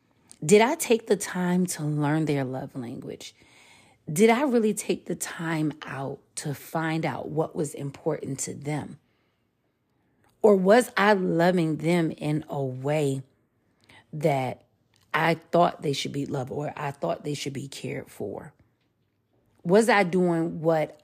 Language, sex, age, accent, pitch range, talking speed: English, female, 40-59, American, 140-185 Hz, 150 wpm